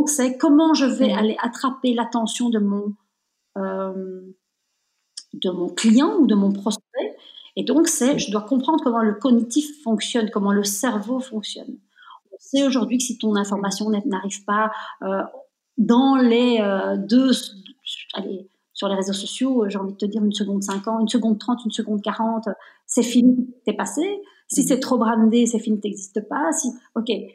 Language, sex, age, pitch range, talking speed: French, female, 40-59, 200-260 Hz, 175 wpm